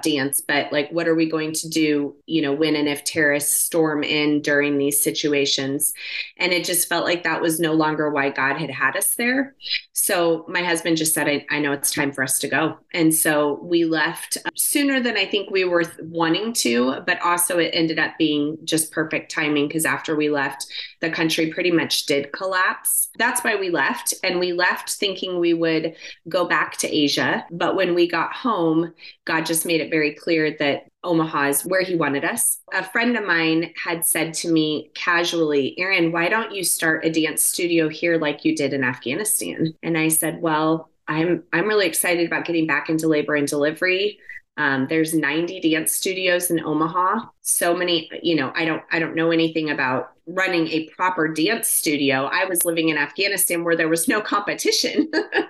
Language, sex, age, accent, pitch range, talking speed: English, female, 30-49, American, 155-180 Hz, 200 wpm